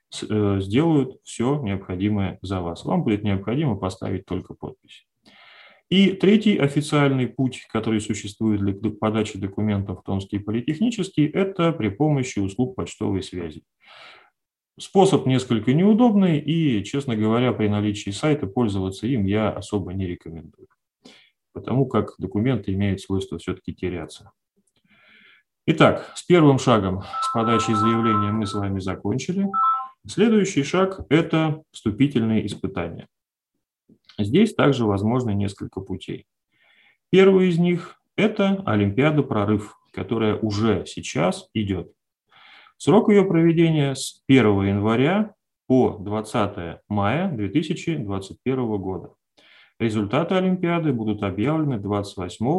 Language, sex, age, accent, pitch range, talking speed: Russian, male, 30-49, native, 100-155 Hz, 110 wpm